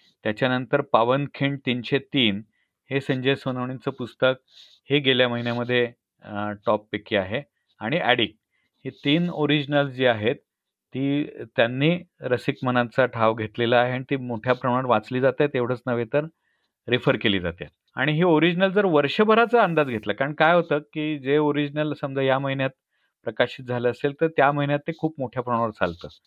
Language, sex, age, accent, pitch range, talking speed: Marathi, male, 40-59, native, 125-155 Hz, 150 wpm